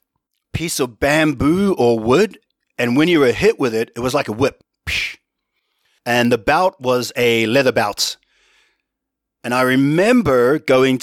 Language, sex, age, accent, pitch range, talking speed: English, male, 40-59, Australian, 125-175 Hz, 150 wpm